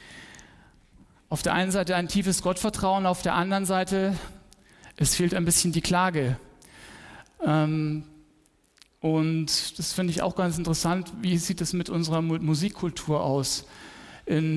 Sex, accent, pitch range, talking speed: male, German, 155-185 Hz, 130 wpm